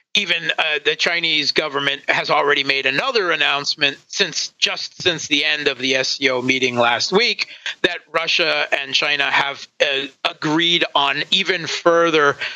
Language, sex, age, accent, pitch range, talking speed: English, male, 40-59, American, 135-190 Hz, 150 wpm